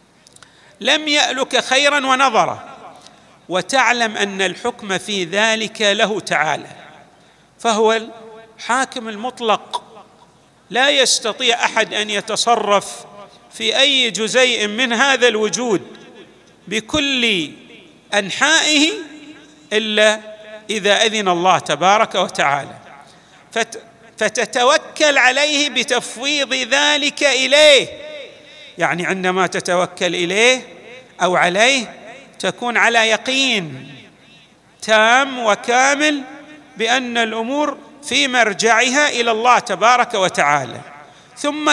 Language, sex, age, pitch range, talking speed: Arabic, male, 40-59, 205-265 Hz, 85 wpm